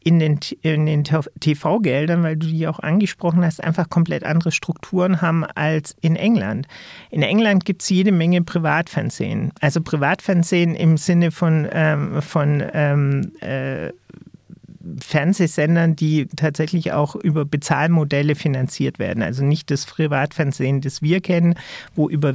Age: 40-59